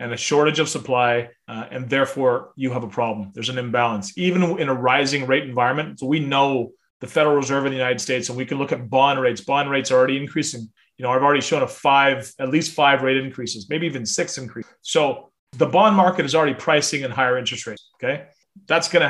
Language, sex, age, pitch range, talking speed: English, male, 30-49, 125-155 Hz, 230 wpm